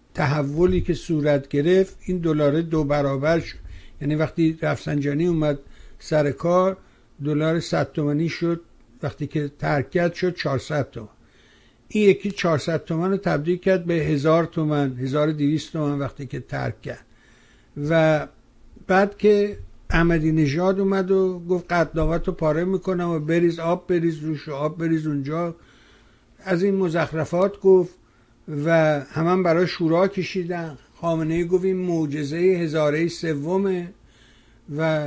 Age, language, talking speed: 60-79, Persian, 125 wpm